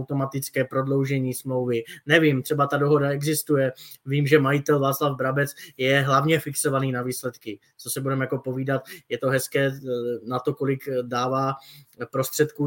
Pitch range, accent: 135-155 Hz, native